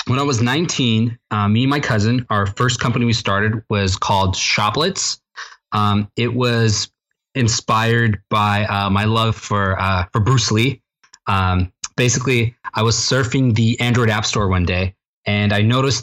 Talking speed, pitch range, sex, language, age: 165 wpm, 105-130 Hz, male, English, 20-39